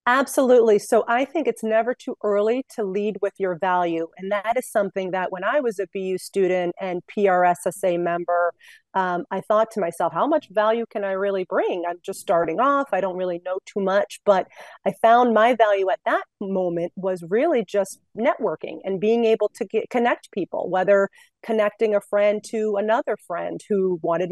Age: 30-49